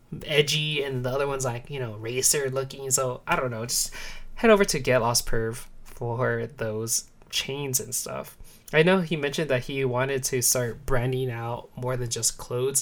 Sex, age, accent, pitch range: male, 20-39, American, 120-145 Hz